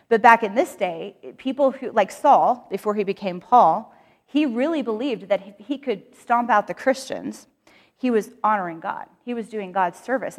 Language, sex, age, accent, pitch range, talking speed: English, female, 30-49, American, 190-235 Hz, 185 wpm